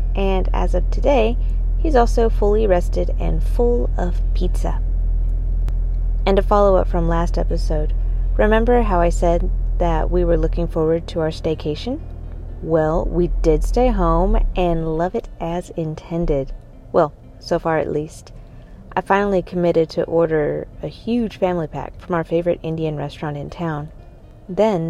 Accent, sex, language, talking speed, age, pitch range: American, female, English, 150 wpm, 30-49, 150-190 Hz